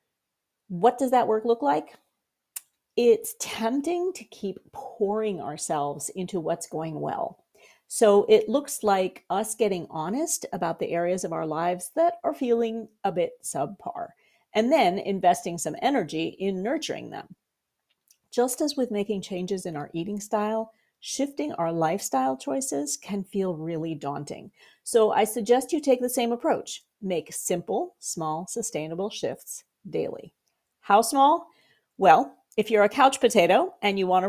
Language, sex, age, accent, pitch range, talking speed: English, female, 40-59, American, 180-260 Hz, 150 wpm